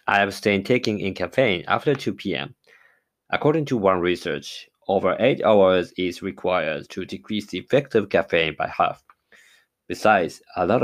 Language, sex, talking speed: English, male, 155 wpm